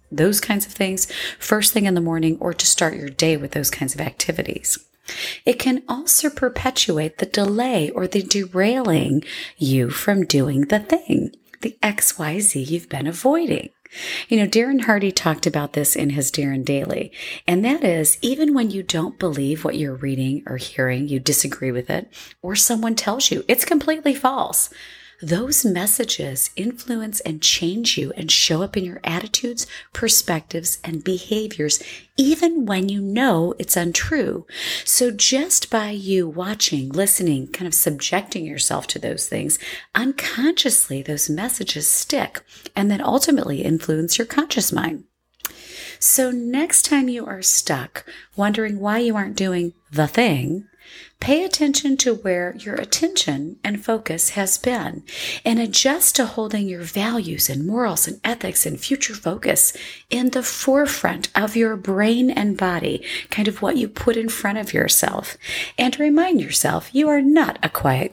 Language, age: English, 30-49